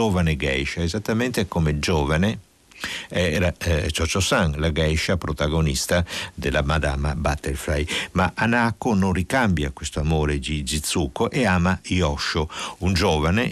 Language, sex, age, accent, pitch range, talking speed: Italian, male, 60-79, native, 75-100 Hz, 125 wpm